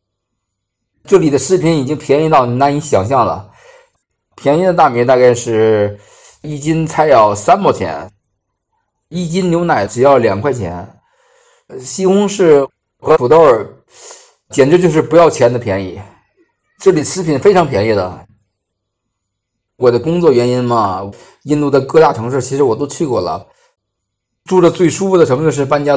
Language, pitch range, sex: Chinese, 110-165 Hz, male